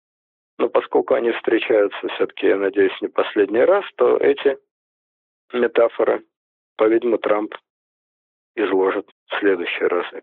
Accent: native